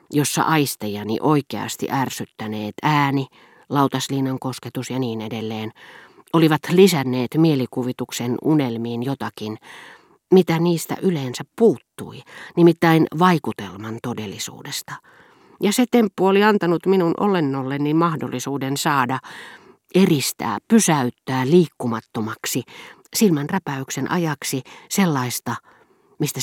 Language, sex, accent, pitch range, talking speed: Finnish, female, native, 125-170 Hz, 90 wpm